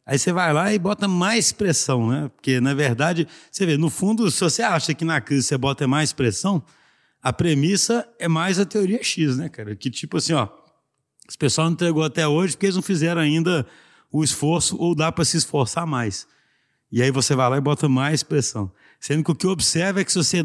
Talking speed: 225 wpm